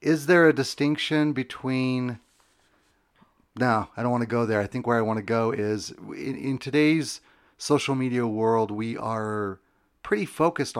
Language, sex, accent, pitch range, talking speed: English, male, American, 100-125 Hz, 165 wpm